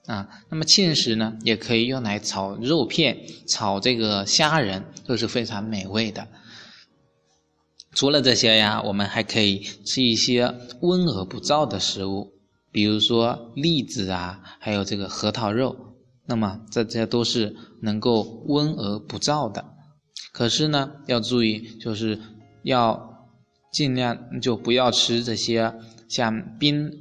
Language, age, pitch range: Chinese, 20-39, 105-125 Hz